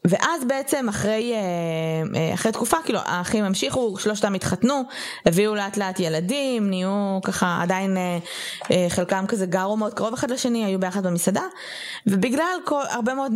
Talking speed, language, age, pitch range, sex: 140 wpm, Hebrew, 20-39, 175-230 Hz, female